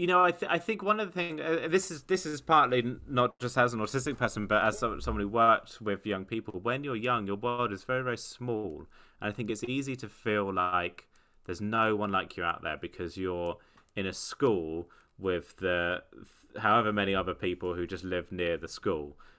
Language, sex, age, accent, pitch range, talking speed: English, male, 30-49, British, 85-110 Hz, 230 wpm